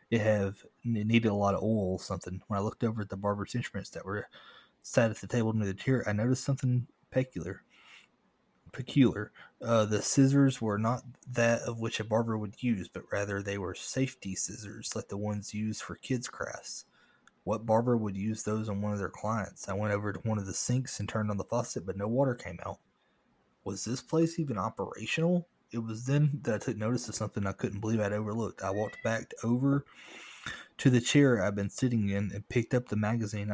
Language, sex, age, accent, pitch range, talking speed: English, male, 30-49, American, 100-125 Hz, 215 wpm